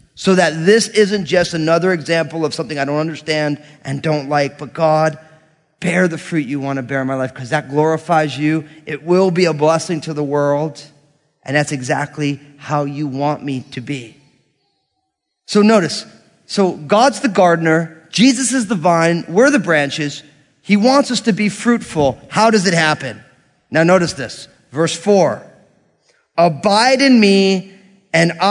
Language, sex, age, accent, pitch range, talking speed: English, male, 30-49, American, 150-210 Hz, 170 wpm